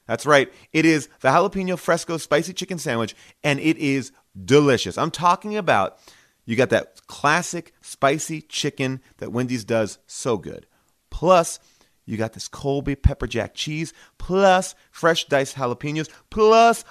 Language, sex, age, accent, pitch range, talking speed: English, male, 30-49, American, 130-195 Hz, 145 wpm